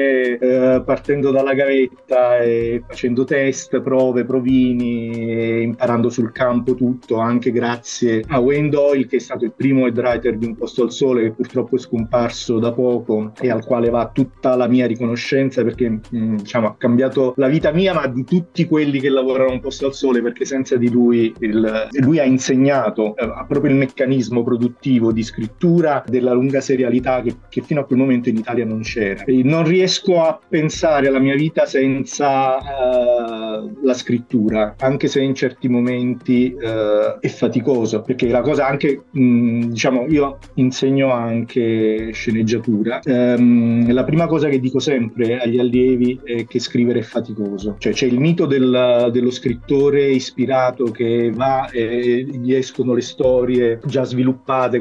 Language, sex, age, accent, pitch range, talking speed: Italian, male, 30-49, native, 115-135 Hz, 160 wpm